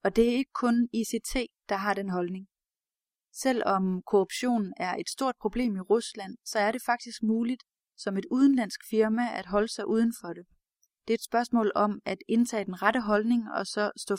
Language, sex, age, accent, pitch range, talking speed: Danish, female, 30-49, native, 195-235 Hz, 195 wpm